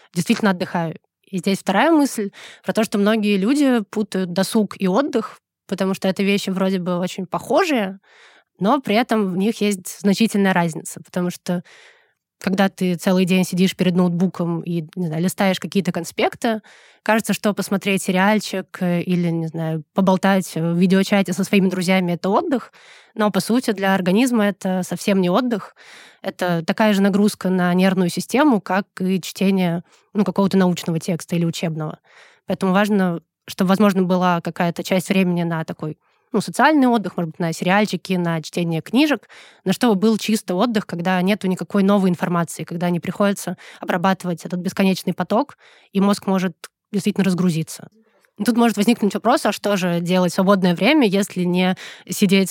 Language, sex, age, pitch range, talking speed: Russian, female, 20-39, 180-210 Hz, 160 wpm